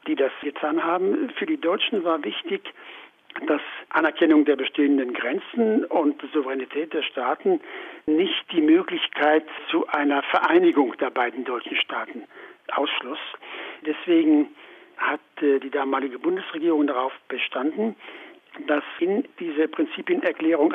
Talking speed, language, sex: 115 wpm, German, male